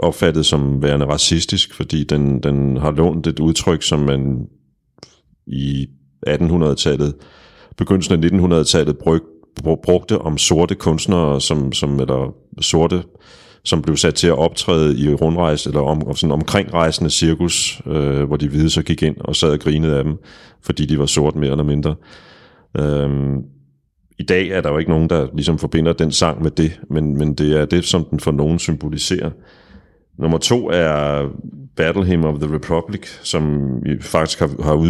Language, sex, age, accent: Danish, male, 30-49, native